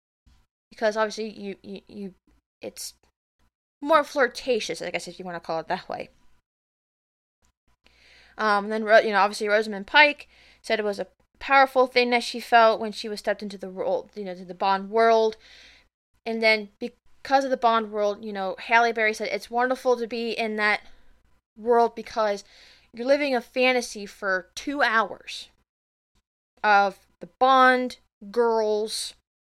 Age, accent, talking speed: 20-39, American, 155 wpm